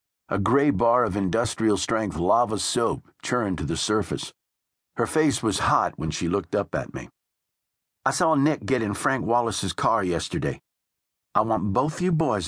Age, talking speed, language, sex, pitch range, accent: 50-69, 170 wpm, English, male, 100-140 Hz, American